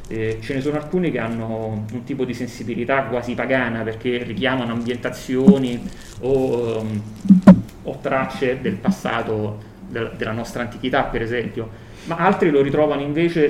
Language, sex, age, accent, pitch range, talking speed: Italian, male, 30-49, native, 110-145 Hz, 135 wpm